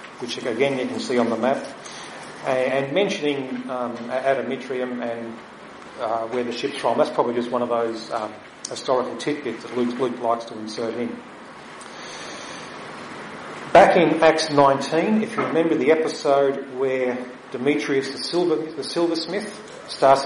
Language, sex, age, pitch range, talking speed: English, male, 40-59, 120-145 Hz, 145 wpm